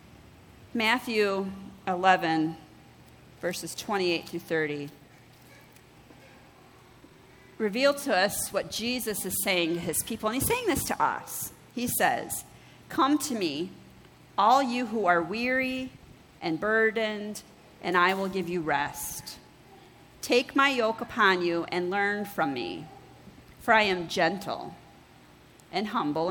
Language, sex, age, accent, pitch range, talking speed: English, female, 40-59, American, 165-220 Hz, 125 wpm